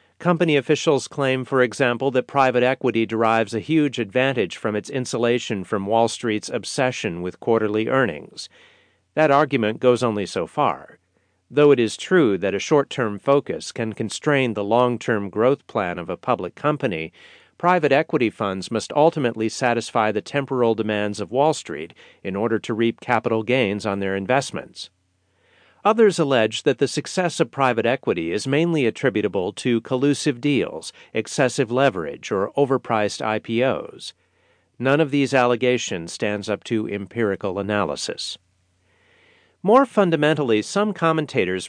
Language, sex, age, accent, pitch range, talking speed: English, male, 40-59, American, 105-140 Hz, 145 wpm